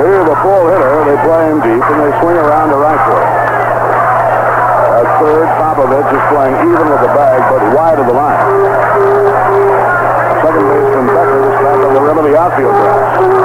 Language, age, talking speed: English, 60-79, 185 wpm